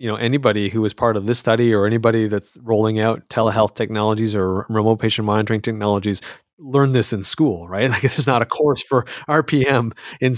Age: 30-49